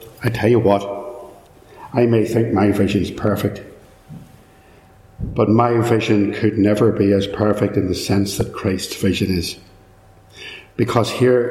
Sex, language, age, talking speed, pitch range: male, English, 60-79, 145 wpm, 115-140 Hz